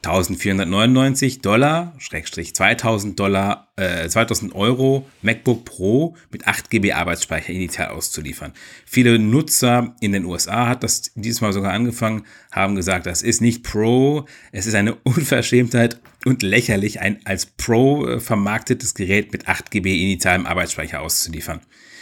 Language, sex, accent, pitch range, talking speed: German, male, German, 95-125 Hz, 135 wpm